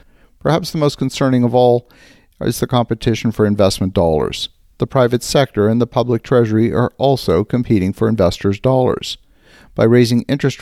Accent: American